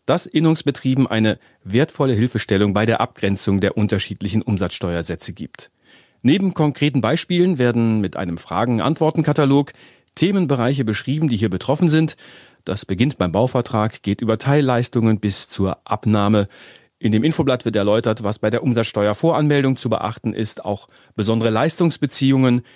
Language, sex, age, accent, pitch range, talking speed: German, male, 40-59, German, 110-150 Hz, 130 wpm